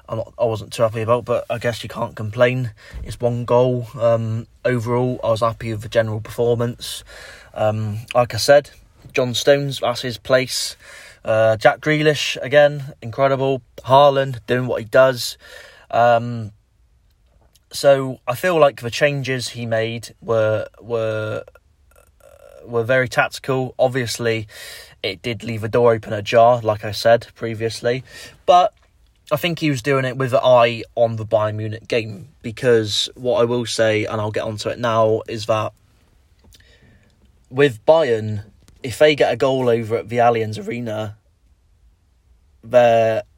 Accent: British